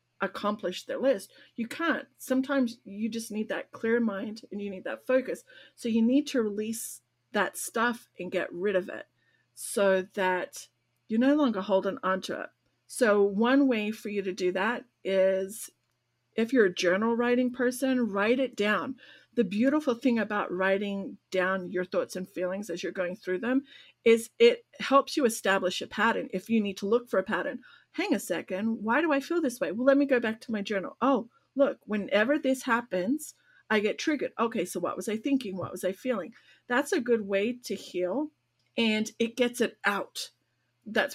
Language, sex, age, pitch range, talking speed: English, female, 40-59, 195-265 Hz, 190 wpm